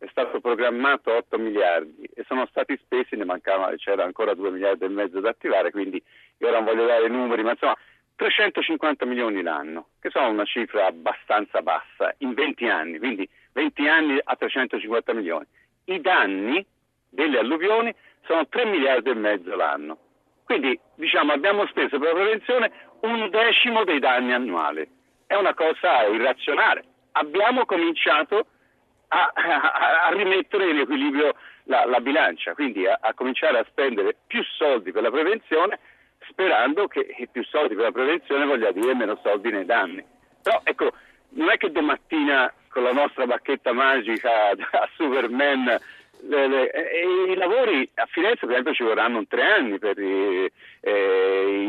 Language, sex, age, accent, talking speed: Italian, male, 50-69, native, 155 wpm